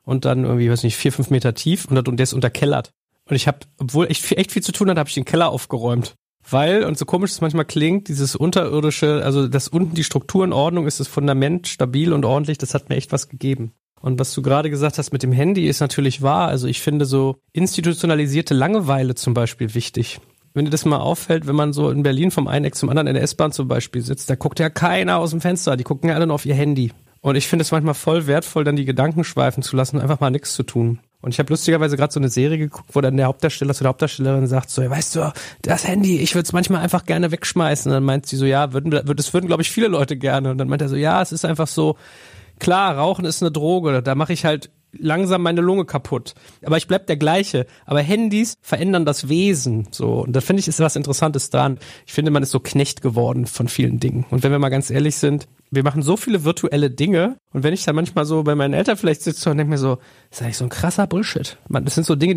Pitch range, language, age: 135-165 Hz, German, 40-59